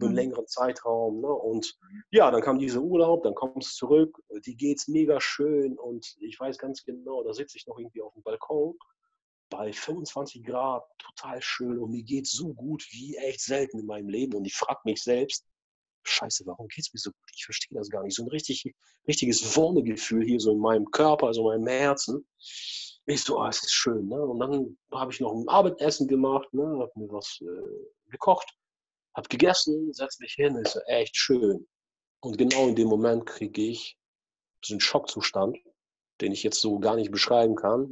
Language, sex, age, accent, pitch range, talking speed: German, male, 40-59, German, 120-155 Hz, 205 wpm